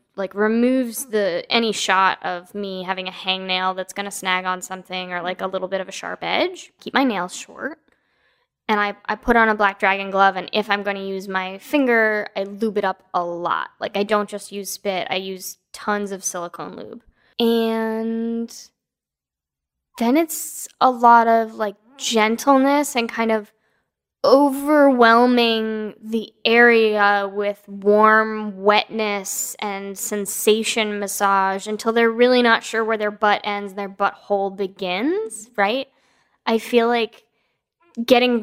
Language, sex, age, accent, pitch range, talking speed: English, female, 10-29, American, 195-230 Hz, 160 wpm